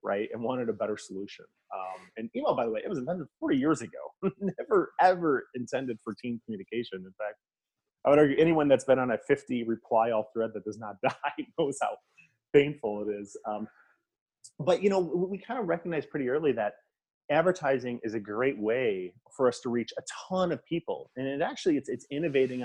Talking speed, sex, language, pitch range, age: 205 wpm, male, English, 105-145 Hz, 30-49